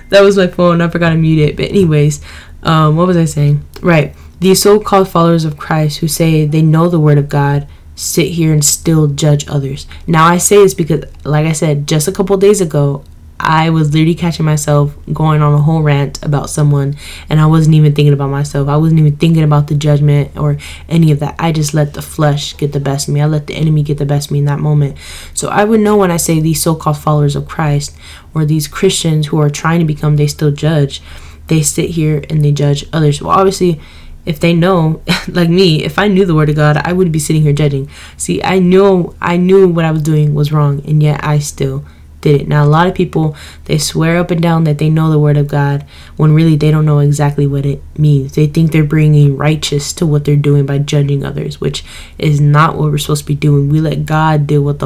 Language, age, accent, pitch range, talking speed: English, 10-29, American, 145-160 Hz, 240 wpm